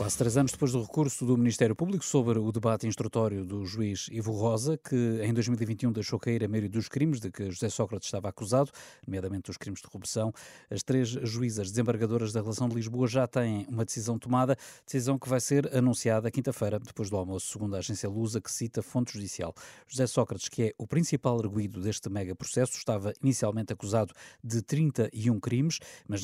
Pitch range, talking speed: 105-125 Hz, 190 wpm